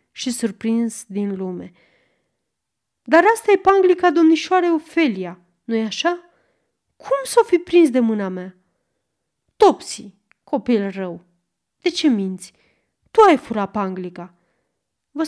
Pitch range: 200-315 Hz